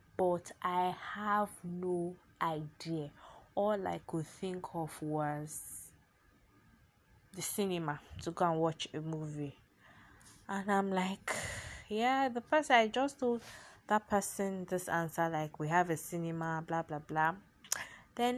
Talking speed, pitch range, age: 135 wpm, 170-225 Hz, 20-39